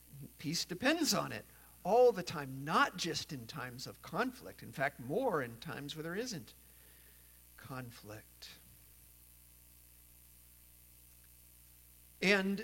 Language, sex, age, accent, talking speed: English, male, 50-69, American, 110 wpm